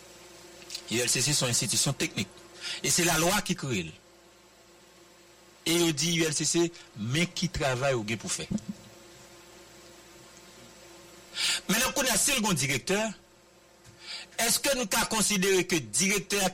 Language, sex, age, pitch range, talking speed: English, male, 60-79, 170-180 Hz, 125 wpm